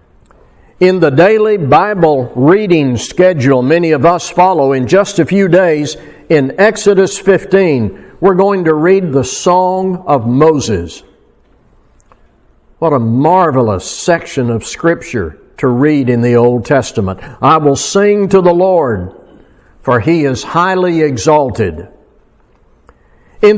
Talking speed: 125 wpm